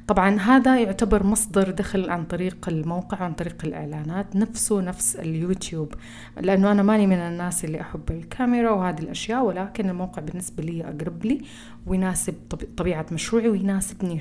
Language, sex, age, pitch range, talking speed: Arabic, female, 30-49, 165-200 Hz, 145 wpm